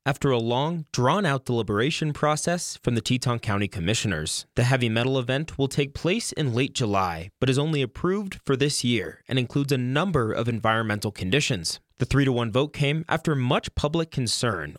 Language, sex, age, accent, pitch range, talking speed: English, male, 20-39, American, 115-155 Hz, 175 wpm